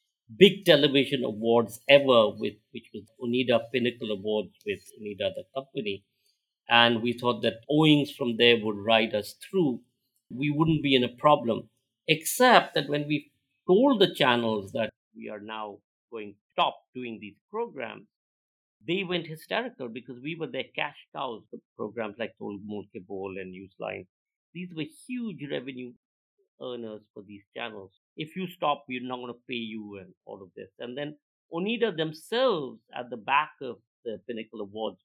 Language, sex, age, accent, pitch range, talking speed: Hindi, male, 50-69, native, 105-150 Hz, 170 wpm